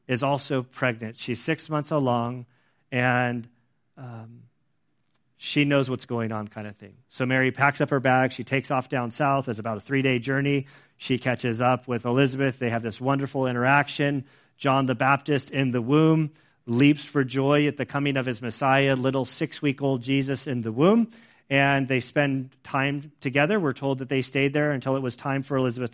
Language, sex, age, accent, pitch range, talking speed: English, male, 40-59, American, 125-145 Hz, 185 wpm